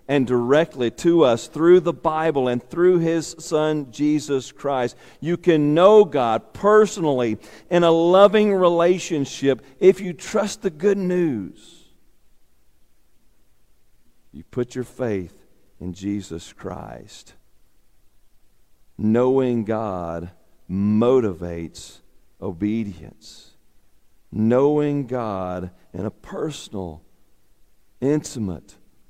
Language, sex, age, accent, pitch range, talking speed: English, male, 50-69, American, 105-155 Hz, 95 wpm